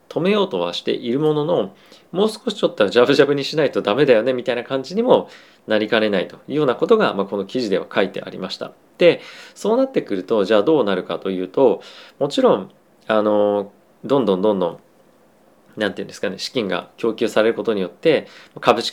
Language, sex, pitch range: Japanese, male, 105-135 Hz